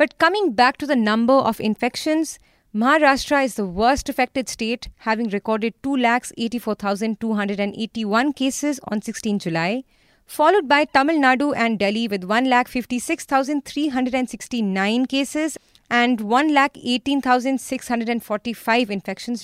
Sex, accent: female, Indian